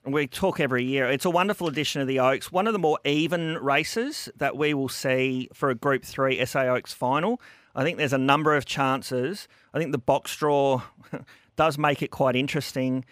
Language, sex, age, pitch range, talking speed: English, male, 40-59, 125-155 Hz, 205 wpm